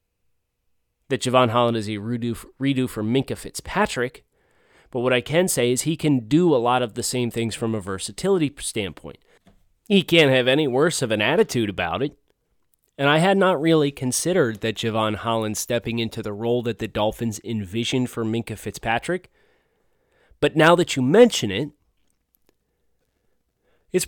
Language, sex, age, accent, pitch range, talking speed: English, male, 30-49, American, 115-155 Hz, 160 wpm